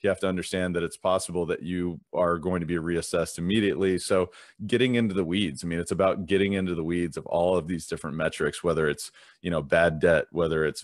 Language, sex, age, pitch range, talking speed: English, male, 30-49, 85-100 Hz, 225 wpm